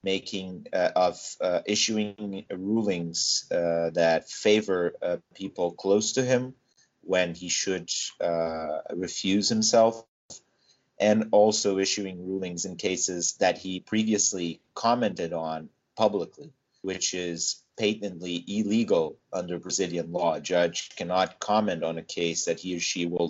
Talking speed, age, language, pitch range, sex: 130 wpm, 30-49, English, 85-105 Hz, male